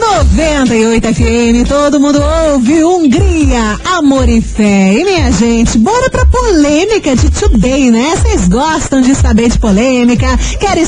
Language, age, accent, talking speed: Portuguese, 40-59, Brazilian, 140 wpm